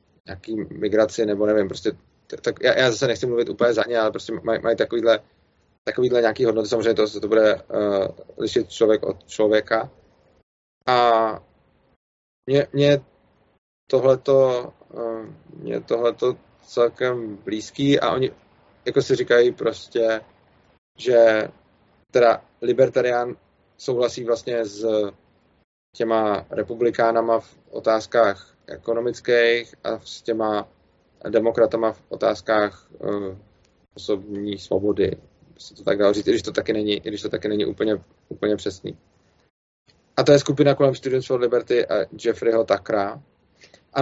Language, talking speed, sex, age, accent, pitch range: Czech, 125 wpm, male, 20-39, native, 105-125 Hz